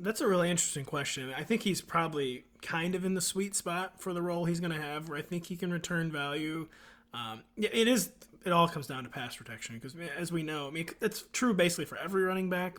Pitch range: 135-180 Hz